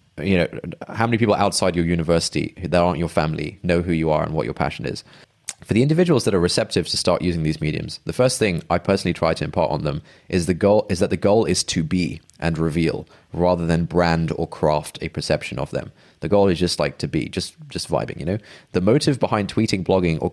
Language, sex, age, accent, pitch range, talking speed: English, male, 20-39, British, 85-100 Hz, 240 wpm